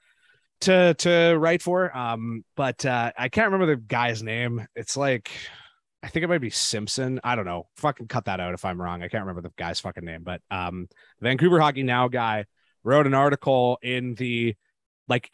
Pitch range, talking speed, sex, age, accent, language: 105-140 Hz, 195 wpm, male, 30-49, American, English